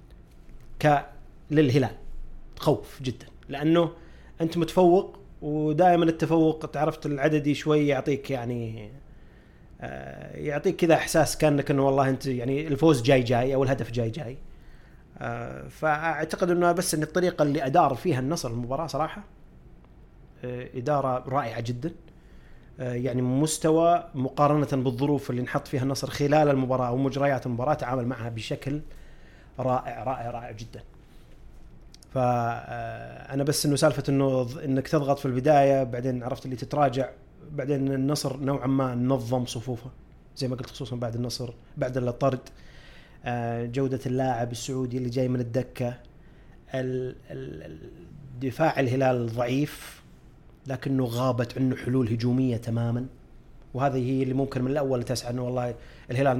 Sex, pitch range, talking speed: male, 125-145 Hz, 125 wpm